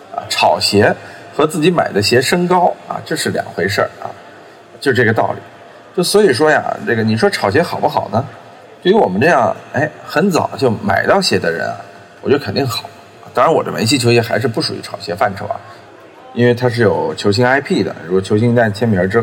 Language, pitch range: Chinese, 100-125 Hz